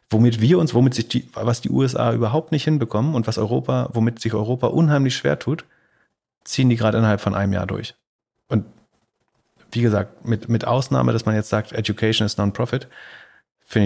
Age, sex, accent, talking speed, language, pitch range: 30-49, male, German, 185 wpm, German, 100-115 Hz